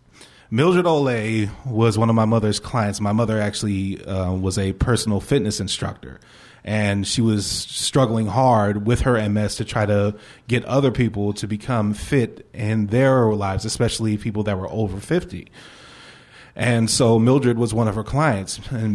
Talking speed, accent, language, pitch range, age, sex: 165 wpm, American, English, 100-115 Hz, 30-49, male